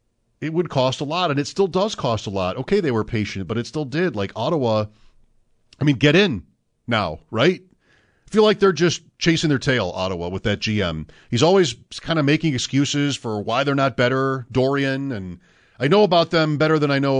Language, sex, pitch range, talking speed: English, male, 105-140 Hz, 215 wpm